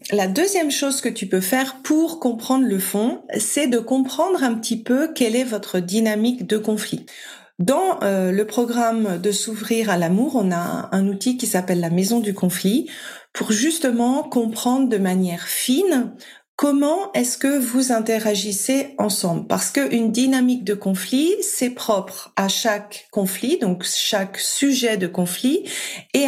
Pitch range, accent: 205-265 Hz, French